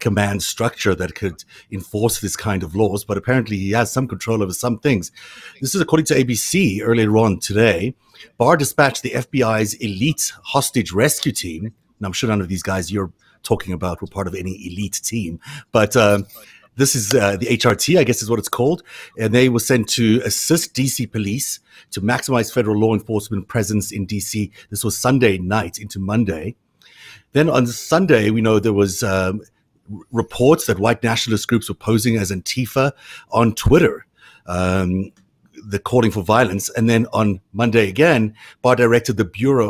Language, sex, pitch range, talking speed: English, male, 100-125 Hz, 180 wpm